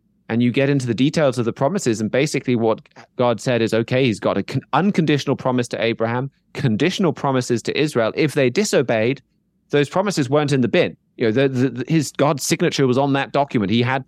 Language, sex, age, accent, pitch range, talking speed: English, male, 20-39, British, 115-145 Hz, 215 wpm